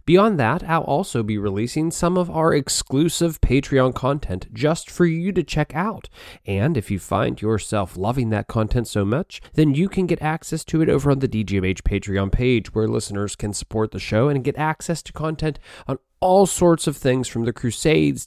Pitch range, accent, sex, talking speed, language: 100-150 Hz, American, male, 195 wpm, English